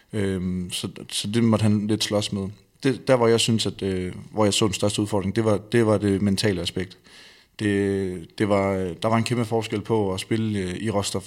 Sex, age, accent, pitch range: male, 30-49, native, 95-110 Hz